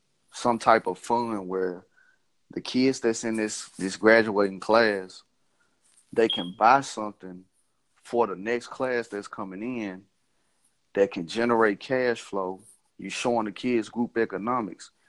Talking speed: 140 wpm